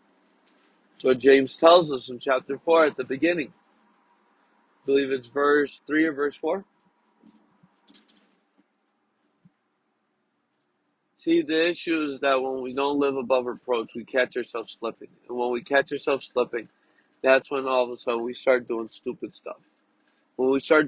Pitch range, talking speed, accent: 130-155 Hz, 160 wpm, American